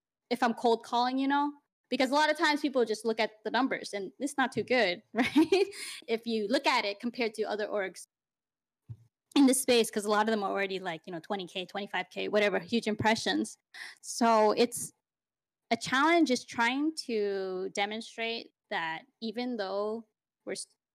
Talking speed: 180 wpm